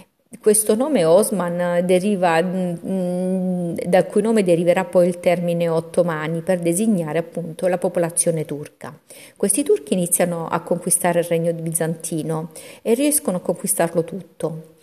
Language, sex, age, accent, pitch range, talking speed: Italian, female, 50-69, native, 170-205 Hz, 125 wpm